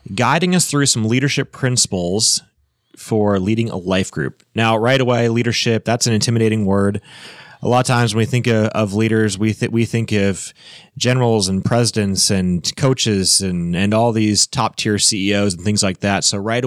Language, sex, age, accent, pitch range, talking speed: English, male, 30-49, American, 100-125 Hz, 185 wpm